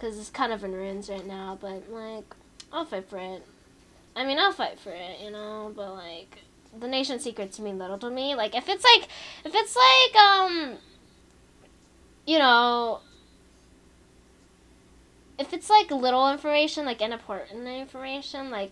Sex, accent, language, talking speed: female, American, English, 165 wpm